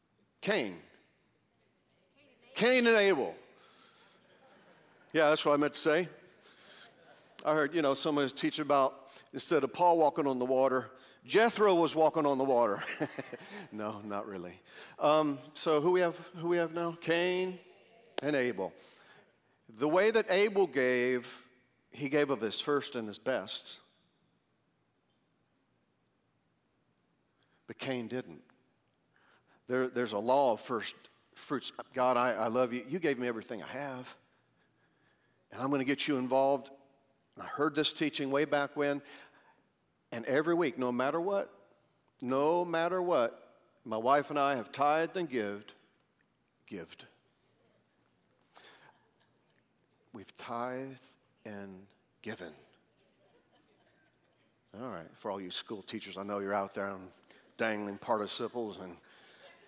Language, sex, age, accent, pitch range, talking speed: English, male, 50-69, American, 125-155 Hz, 135 wpm